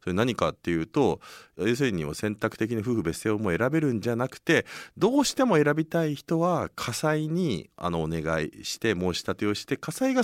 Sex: male